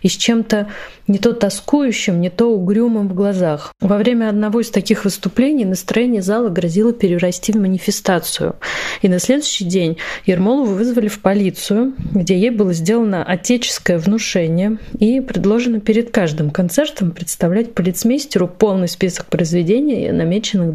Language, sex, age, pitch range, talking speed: Russian, female, 30-49, 180-225 Hz, 140 wpm